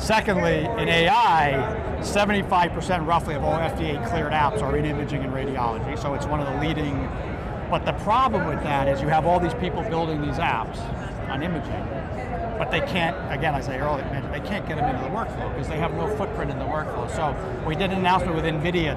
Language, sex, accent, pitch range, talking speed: English, male, American, 145-175 Hz, 205 wpm